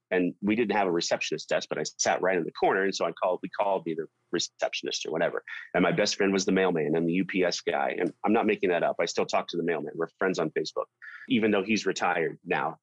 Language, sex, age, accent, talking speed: English, male, 30-49, American, 260 wpm